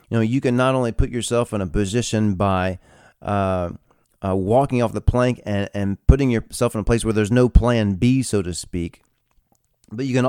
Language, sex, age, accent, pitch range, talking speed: English, male, 30-49, American, 95-120 Hz, 210 wpm